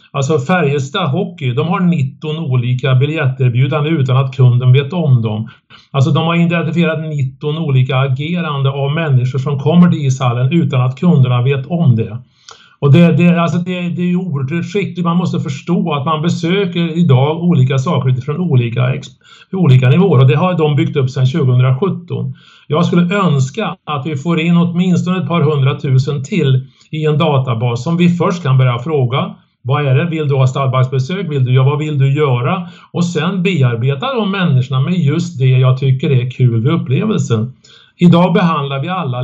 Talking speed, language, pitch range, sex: 175 wpm, Swedish, 130-170 Hz, male